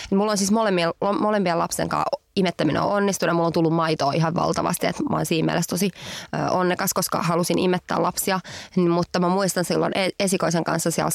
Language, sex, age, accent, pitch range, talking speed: English, female, 20-39, Finnish, 165-190 Hz, 165 wpm